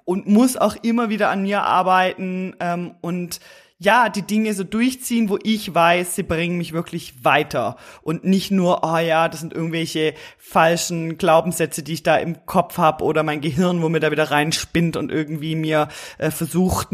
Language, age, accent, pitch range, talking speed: German, 20-39, German, 160-195 Hz, 185 wpm